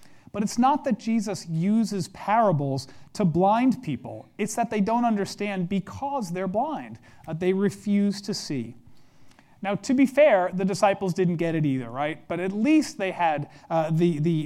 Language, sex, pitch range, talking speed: English, male, 150-210 Hz, 175 wpm